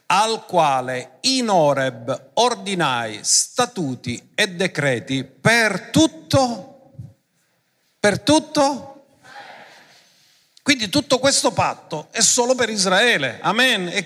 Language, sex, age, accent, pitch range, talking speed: Italian, male, 50-69, native, 160-240 Hz, 95 wpm